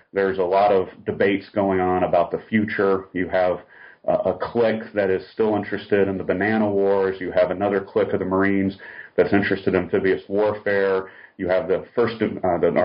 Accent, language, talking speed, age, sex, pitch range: American, English, 185 wpm, 40-59, male, 95-110 Hz